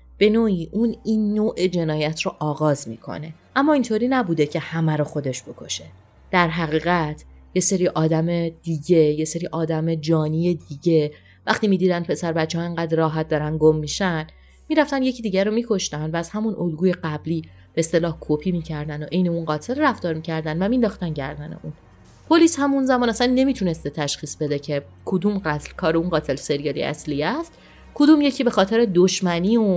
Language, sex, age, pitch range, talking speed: Persian, female, 30-49, 155-190 Hz, 170 wpm